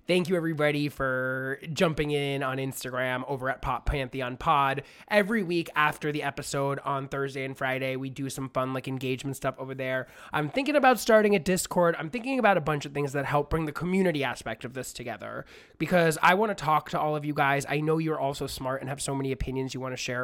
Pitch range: 135-160 Hz